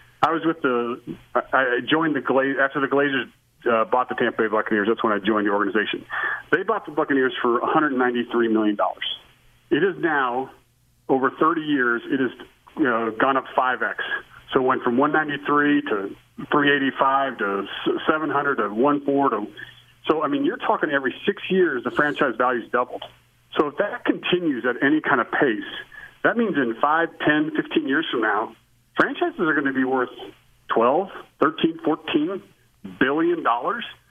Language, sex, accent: English, male, American